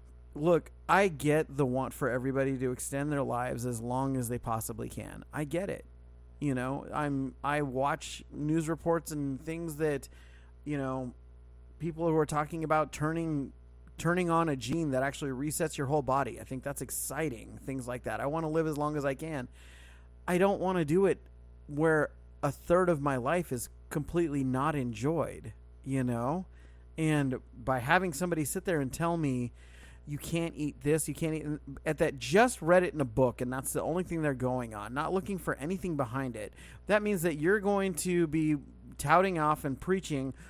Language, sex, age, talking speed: English, male, 30-49, 195 wpm